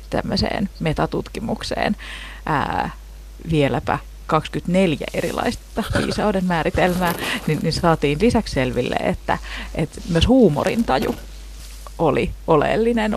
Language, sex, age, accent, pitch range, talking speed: Finnish, female, 30-49, native, 140-210 Hz, 80 wpm